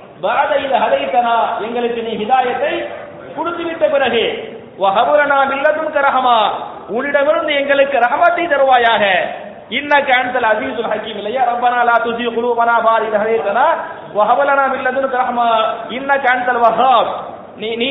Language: English